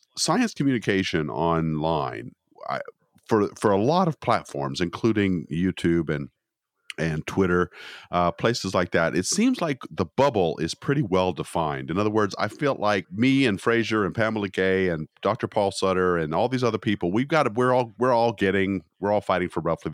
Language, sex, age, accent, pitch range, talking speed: English, male, 40-59, American, 85-115 Hz, 185 wpm